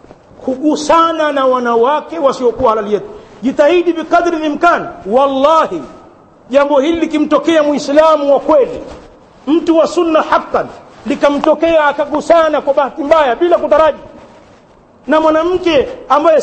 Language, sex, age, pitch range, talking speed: Swahili, male, 50-69, 215-310 Hz, 110 wpm